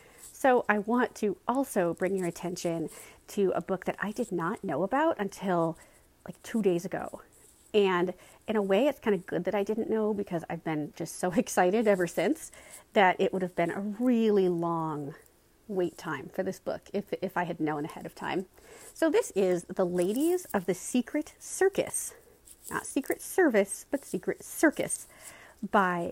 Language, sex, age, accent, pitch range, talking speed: English, female, 40-59, American, 180-245 Hz, 180 wpm